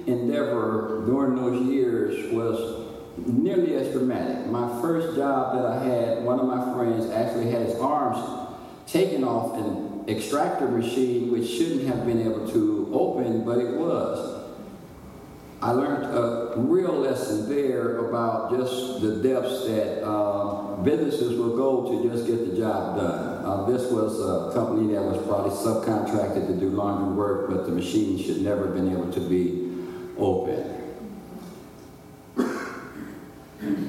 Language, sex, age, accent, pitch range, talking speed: English, male, 50-69, American, 105-125 Hz, 145 wpm